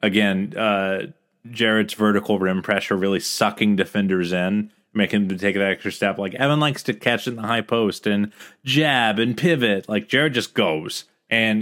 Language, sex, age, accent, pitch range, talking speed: English, male, 30-49, American, 95-115 Hz, 175 wpm